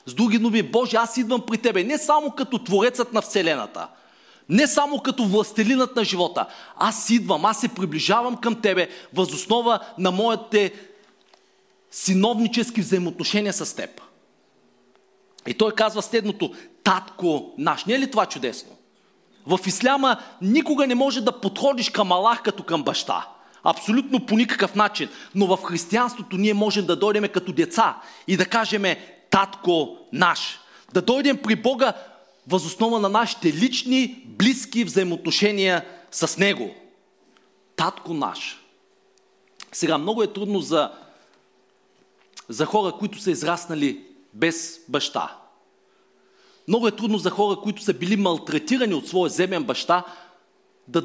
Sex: male